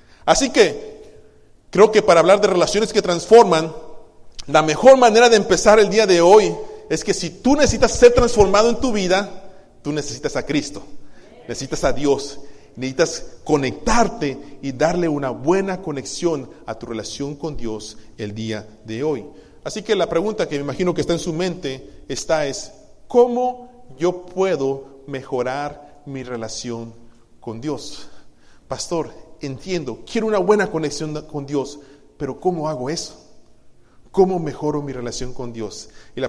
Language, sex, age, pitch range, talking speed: Spanish, male, 40-59, 125-200 Hz, 155 wpm